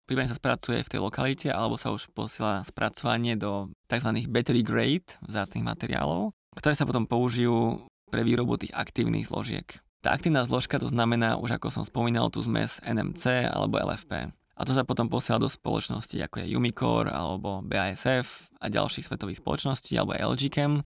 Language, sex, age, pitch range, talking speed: Slovak, male, 20-39, 115-135 Hz, 170 wpm